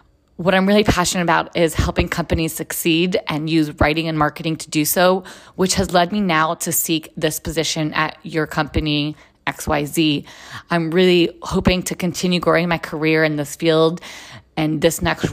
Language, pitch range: English, 155-180 Hz